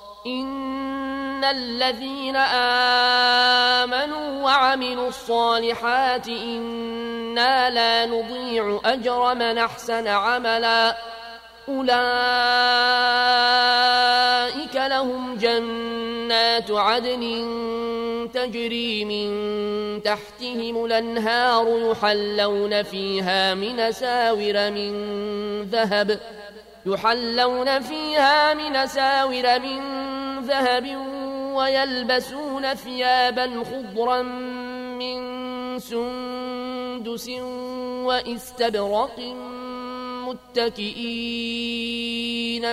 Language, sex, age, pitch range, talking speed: Arabic, male, 20-39, 230-250 Hz, 55 wpm